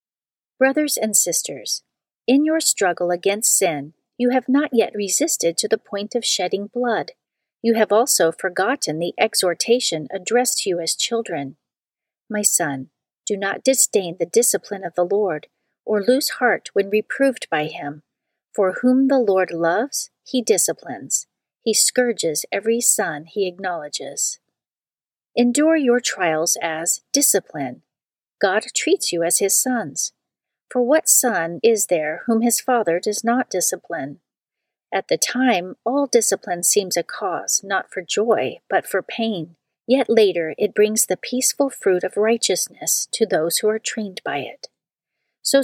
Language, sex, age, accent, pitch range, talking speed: English, female, 40-59, American, 180-245 Hz, 150 wpm